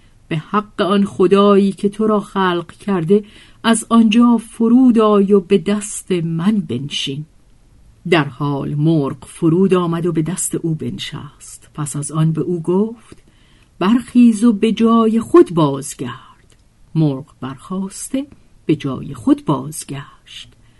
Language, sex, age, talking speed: Persian, female, 50-69, 135 wpm